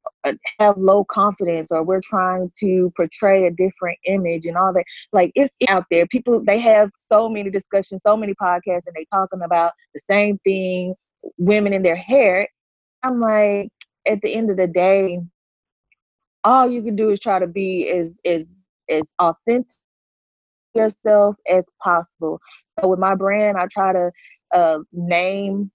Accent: American